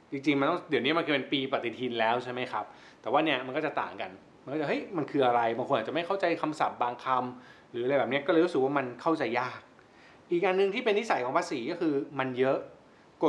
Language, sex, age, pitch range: Thai, male, 20-39, 140-200 Hz